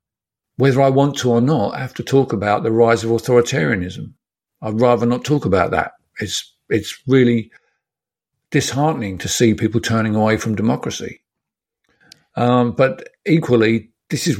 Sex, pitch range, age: male, 110-135 Hz, 50-69